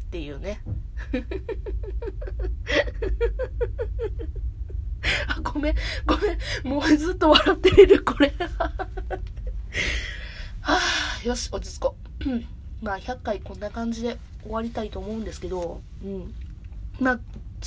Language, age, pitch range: Japanese, 20-39, 195-285 Hz